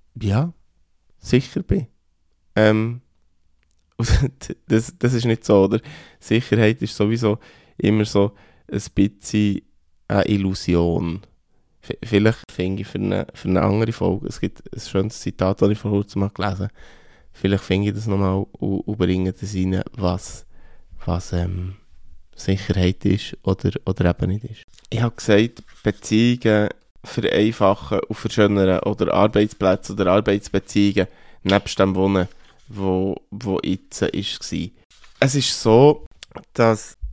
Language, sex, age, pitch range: German, male, 20-39, 95-115 Hz